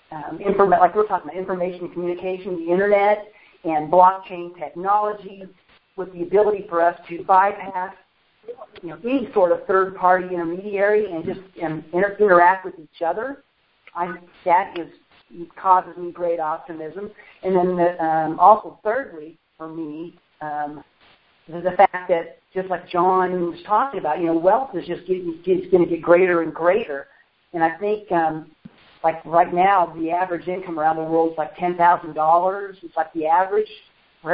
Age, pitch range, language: 50-69, 165-190 Hz, English